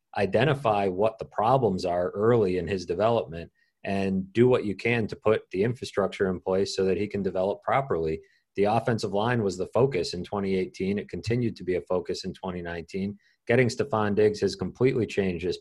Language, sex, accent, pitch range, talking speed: English, male, American, 90-110 Hz, 190 wpm